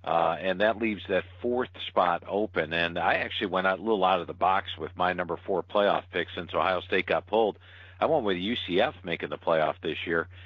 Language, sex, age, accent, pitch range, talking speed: English, male, 50-69, American, 90-110 Hz, 220 wpm